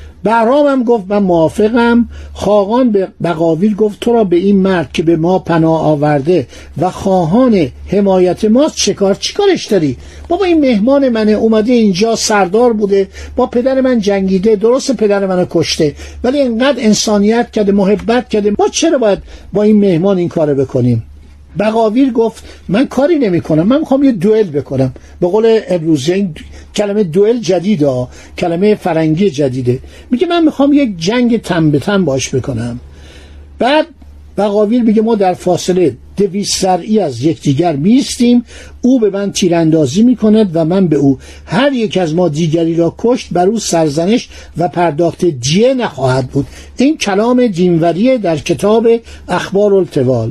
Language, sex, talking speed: Persian, male, 160 wpm